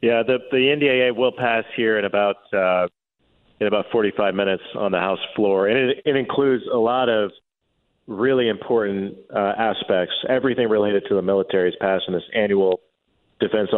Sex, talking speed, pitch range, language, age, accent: male, 175 wpm, 100-130 Hz, English, 40-59, American